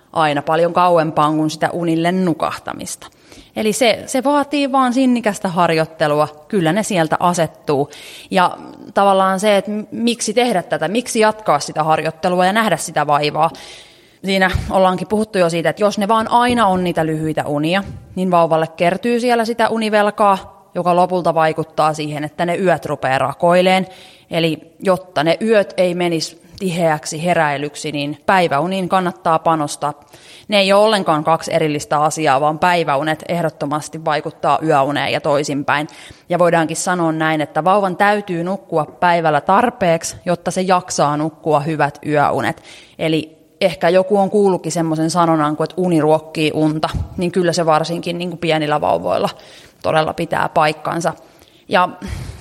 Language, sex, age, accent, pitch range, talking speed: Finnish, female, 20-39, native, 155-190 Hz, 145 wpm